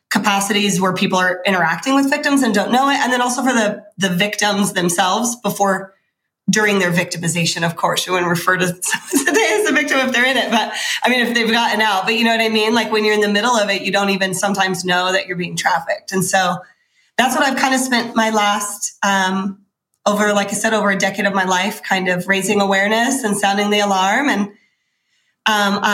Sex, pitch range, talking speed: female, 195-240 Hz, 230 wpm